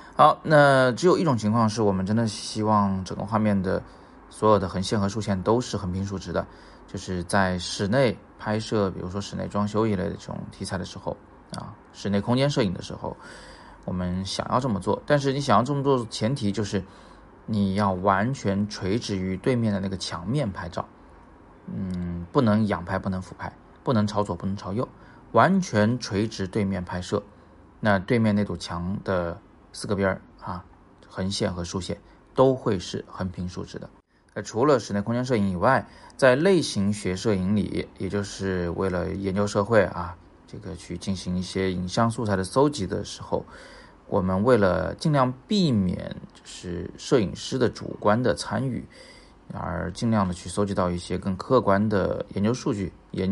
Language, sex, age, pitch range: Chinese, male, 30-49, 95-110 Hz